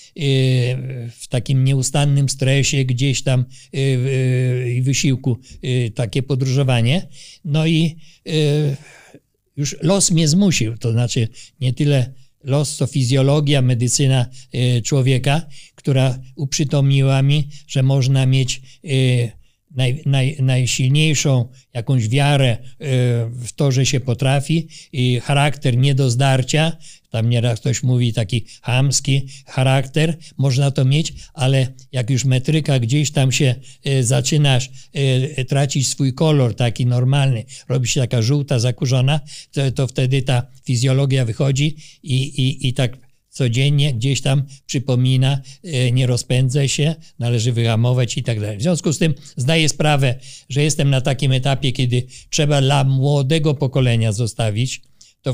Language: Polish